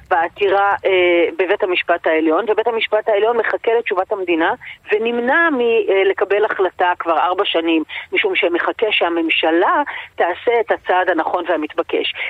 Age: 30-49